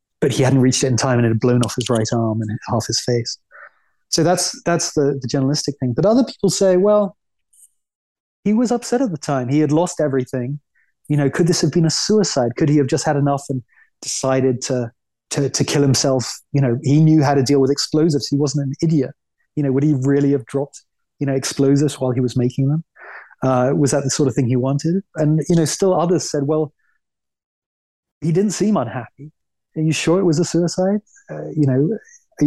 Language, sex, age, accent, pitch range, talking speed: English, male, 30-49, British, 130-160 Hz, 225 wpm